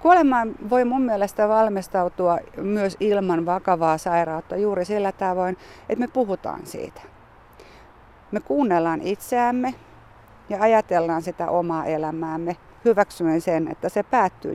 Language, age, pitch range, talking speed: Finnish, 50-69, 160-195 Hz, 120 wpm